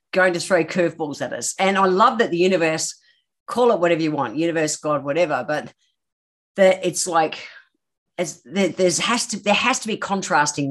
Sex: female